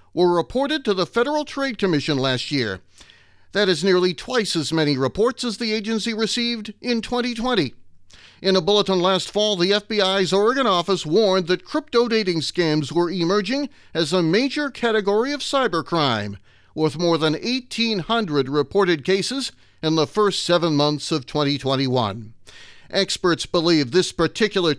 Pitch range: 145-205 Hz